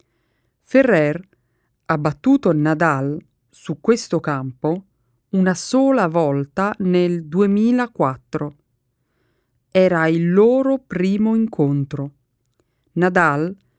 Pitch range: 140-195 Hz